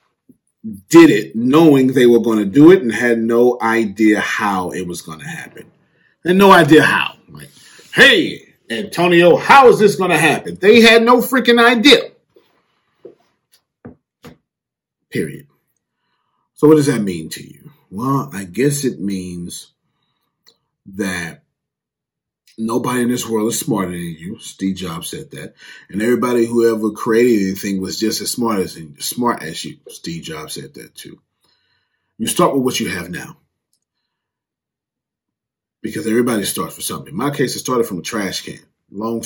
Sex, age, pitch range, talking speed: male, 30-49, 95-145 Hz, 160 wpm